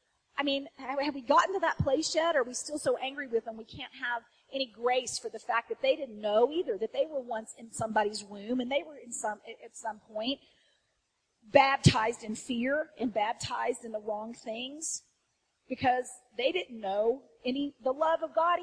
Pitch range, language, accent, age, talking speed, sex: 250-345 Hz, English, American, 40-59, 205 wpm, female